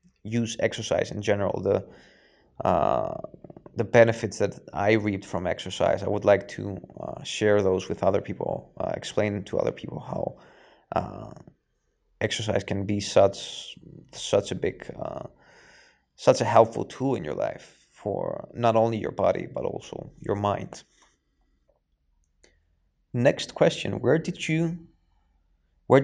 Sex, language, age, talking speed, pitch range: male, English, 20-39, 140 wpm, 100-120 Hz